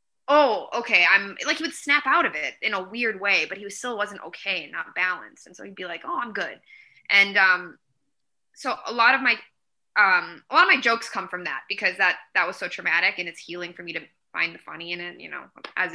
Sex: female